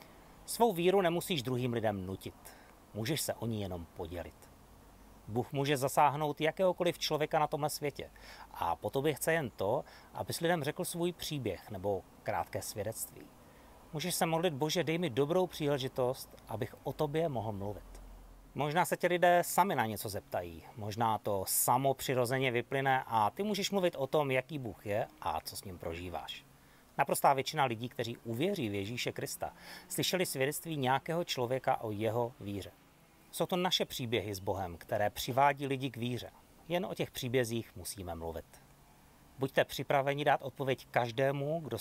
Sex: male